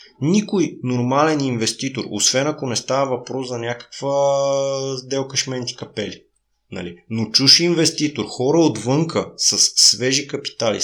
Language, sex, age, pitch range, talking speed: Bulgarian, male, 20-39, 110-140 Hz, 120 wpm